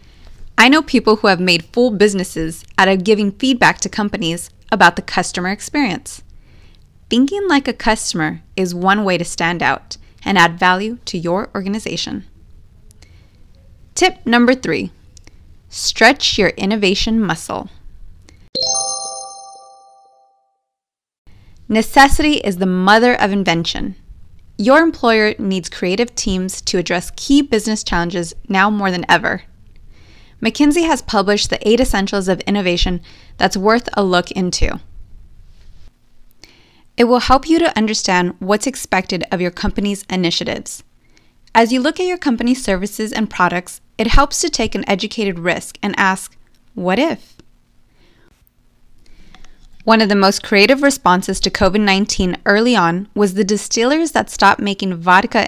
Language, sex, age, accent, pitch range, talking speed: English, female, 20-39, American, 170-225 Hz, 135 wpm